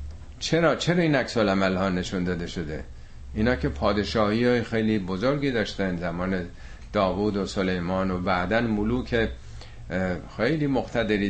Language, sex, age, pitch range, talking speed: Persian, male, 50-69, 90-110 Hz, 135 wpm